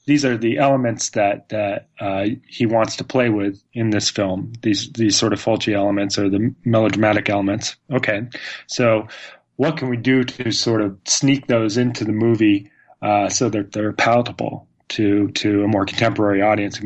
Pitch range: 110-140 Hz